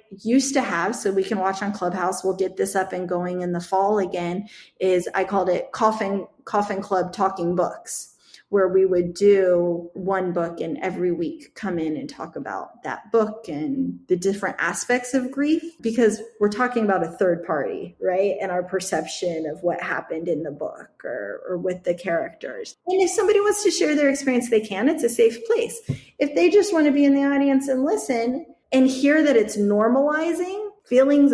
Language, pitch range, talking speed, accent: English, 190-260 Hz, 195 wpm, American